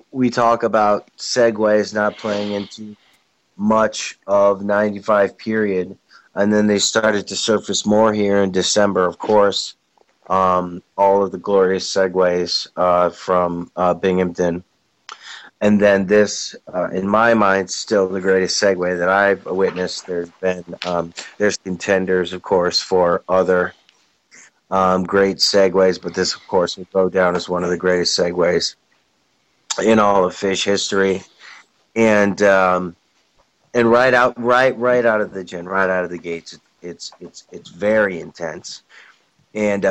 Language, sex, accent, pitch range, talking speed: English, male, American, 90-105 Hz, 150 wpm